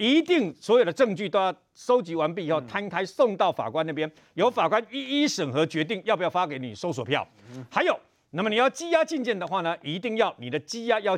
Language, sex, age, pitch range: Chinese, male, 50-69, 160-235 Hz